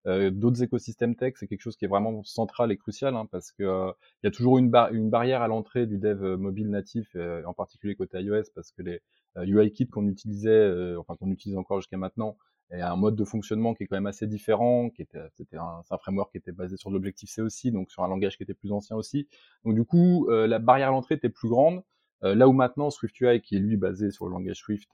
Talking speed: 260 wpm